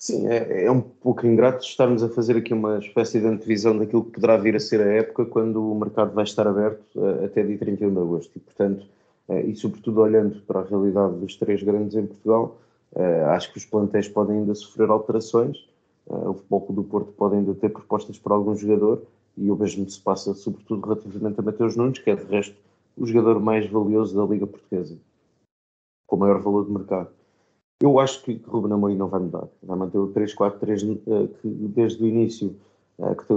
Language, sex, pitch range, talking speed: Portuguese, male, 100-110 Hz, 200 wpm